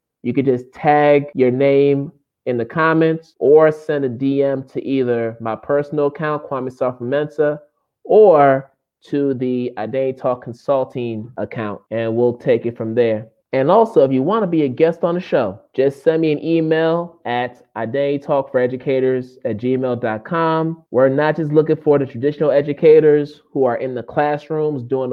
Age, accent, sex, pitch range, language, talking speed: 20-39, American, male, 125-150 Hz, English, 165 wpm